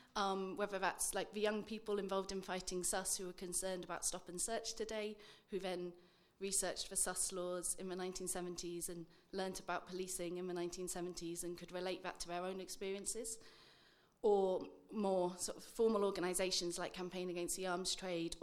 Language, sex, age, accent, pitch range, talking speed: English, female, 30-49, British, 175-210 Hz, 180 wpm